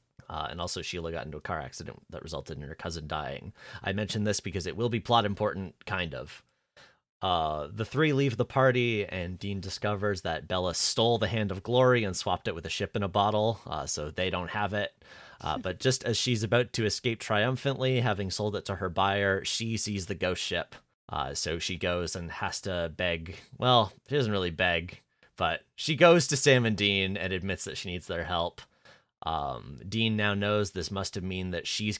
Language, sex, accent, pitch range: English, male, American, 90-115 Hz